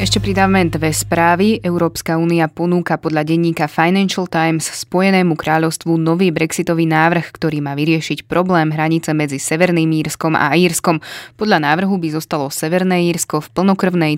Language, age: Slovak, 20-39